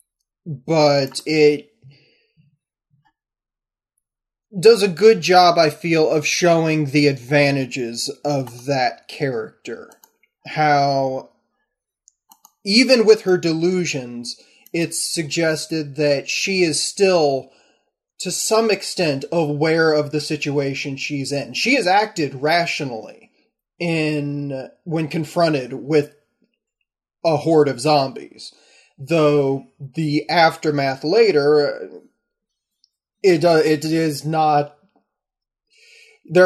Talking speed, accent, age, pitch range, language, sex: 95 wpm, American, 20-39, 145-185 Hz, English, male